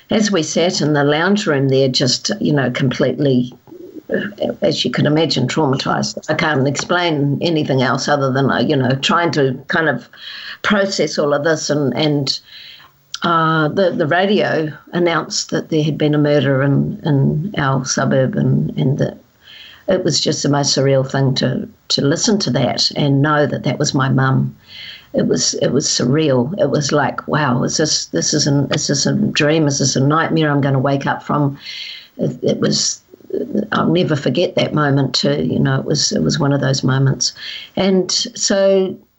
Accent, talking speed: Australian, 185 wpm